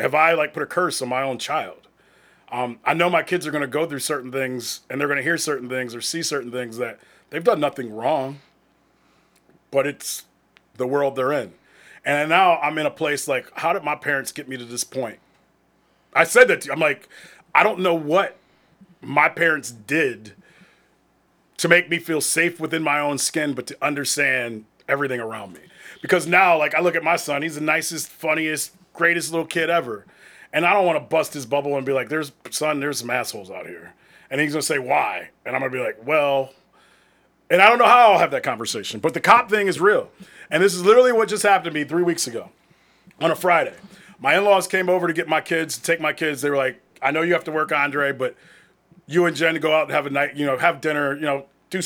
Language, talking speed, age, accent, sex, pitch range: English, 235 wpm, 30-49, American, male, 135-170 Hz